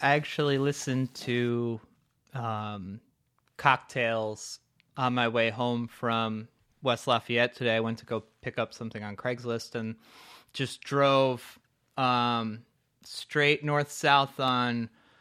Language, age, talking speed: English, 20-39, 120 wpm